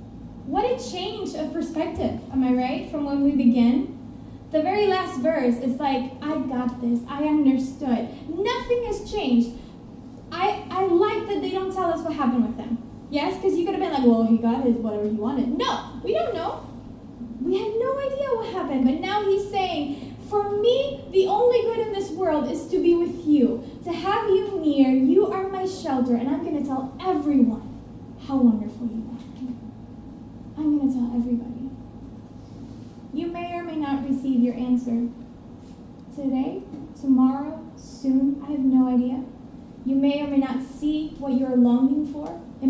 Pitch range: 250-330 Hz